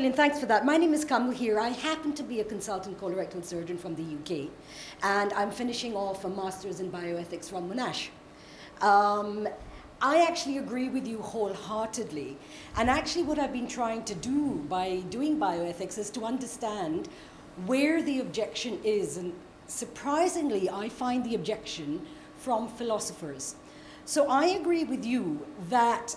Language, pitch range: English, 195-270 Hz